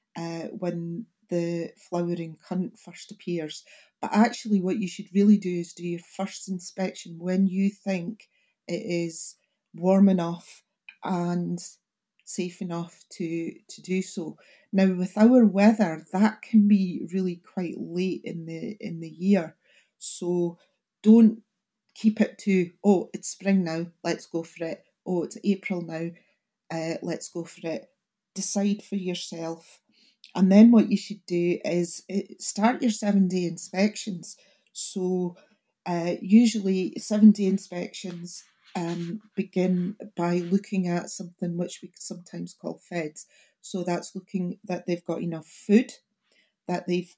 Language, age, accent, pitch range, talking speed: English, 40-59, British, 175-205 Hz, 140 wpm